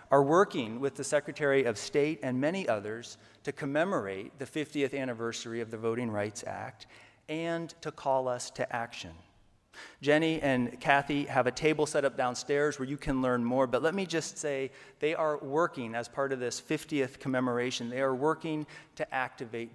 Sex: male